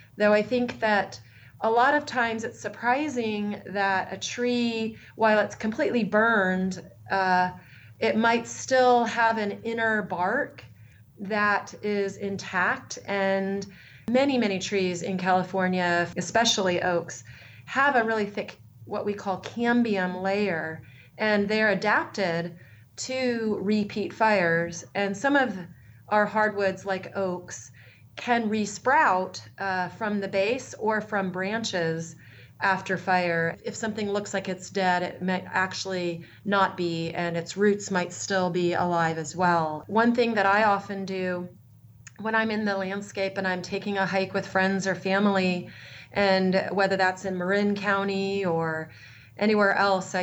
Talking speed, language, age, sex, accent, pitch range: 140 wpm, English, 30-49, female, American, 175-210 Hz